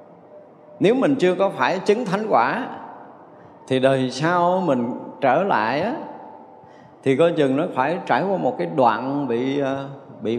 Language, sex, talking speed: Vietnamese, male, 150 wpm